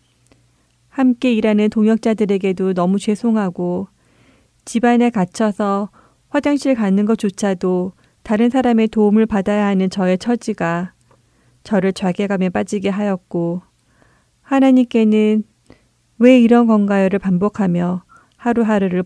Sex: female